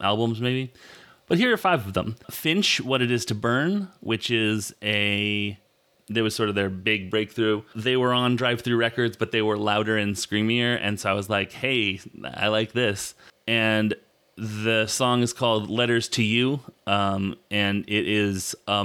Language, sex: English, male